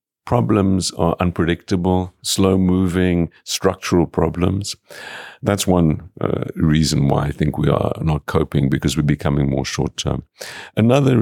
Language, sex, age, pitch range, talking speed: German, male, 50-69, 75-90 Hz, 135 wpm